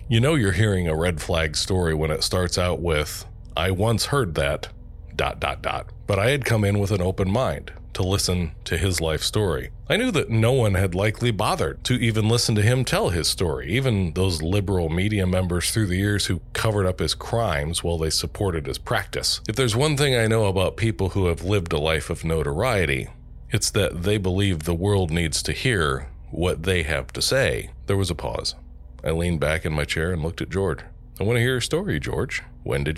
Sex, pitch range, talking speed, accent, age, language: male, 80-110 Hz, 220 wpm, American, 40-59, English